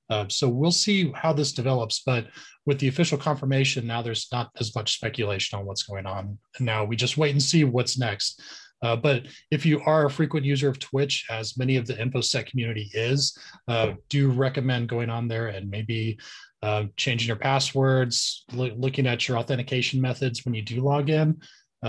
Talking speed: 190 wpm